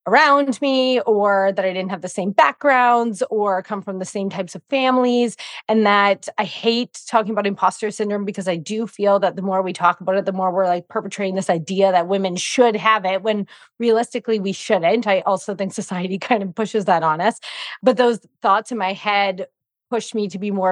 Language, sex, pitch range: English, female, 180-220 Hz